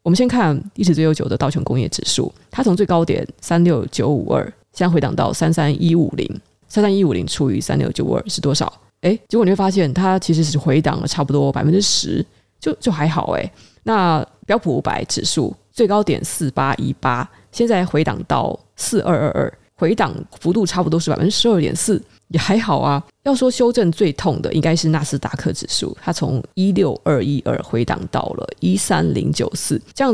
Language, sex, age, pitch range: Chinese, female, 20-39, 145-190 Hz